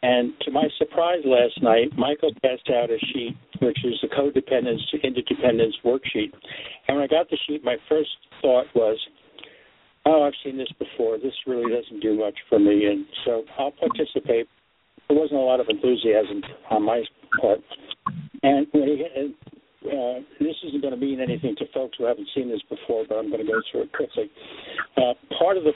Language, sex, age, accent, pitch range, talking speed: English, male, 60-79, American, 120-150 Hz, 190 wpm